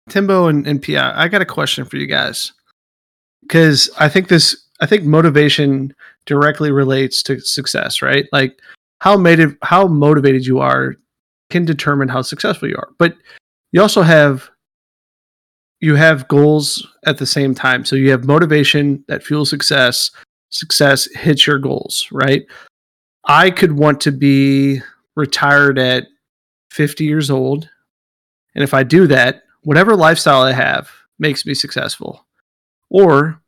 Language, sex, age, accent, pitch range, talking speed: English, male, 30-49, American, 135-160 Hz, 150 wpm